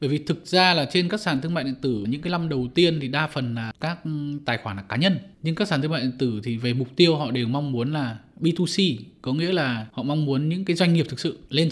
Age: 20-39